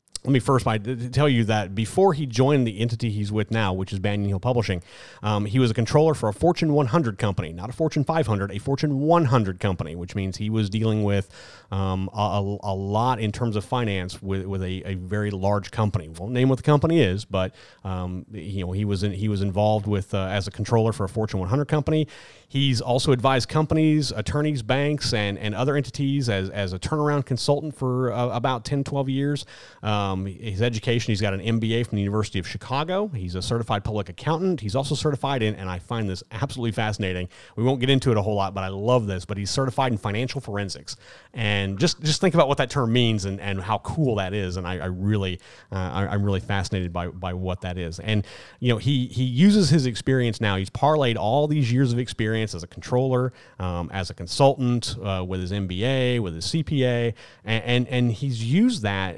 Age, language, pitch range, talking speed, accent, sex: 30-49, English, 100-130 Hz, 220 wpm, American, male